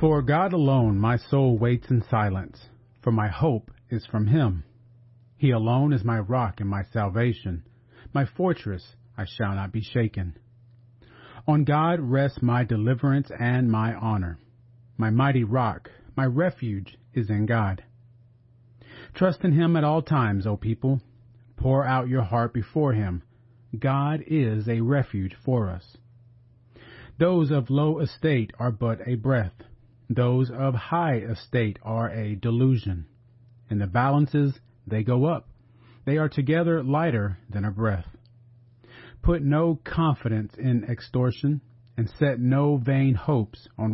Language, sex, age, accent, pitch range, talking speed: English, male, 40-59, American, 115-135 Hz, 140 wpm